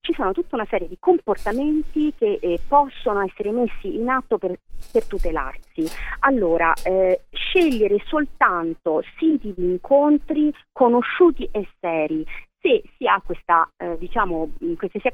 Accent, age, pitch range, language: native, 40-59, 190-295 Hz, Italian